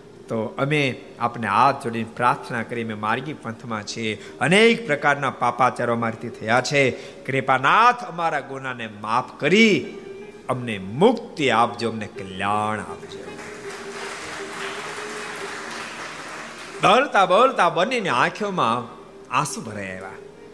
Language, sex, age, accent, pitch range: Gujarati, male, 50-69, native, 105-140 Hz